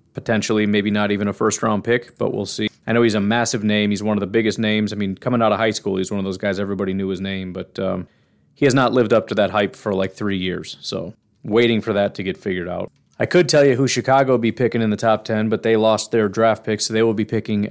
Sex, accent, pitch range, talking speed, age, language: male, American, 105-125 Hz, 285 wpm, 30-49, English